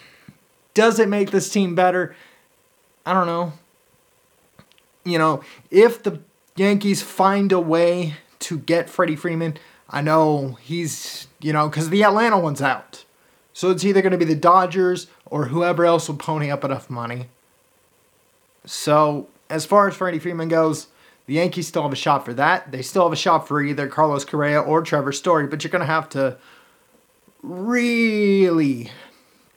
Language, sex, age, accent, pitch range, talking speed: English, male, 30-49, American, 150-185 Hz, 165 wpm